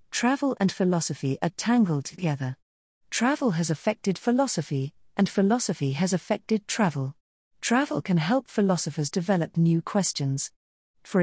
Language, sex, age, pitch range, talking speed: English, female, 50-69, 155-215 Hz, 125 wpm